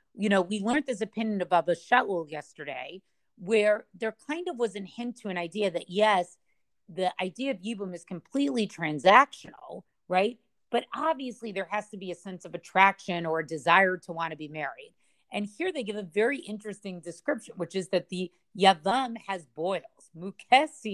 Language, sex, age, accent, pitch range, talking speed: English, female, 30-49, American, 180-230 Hz, 185 wpm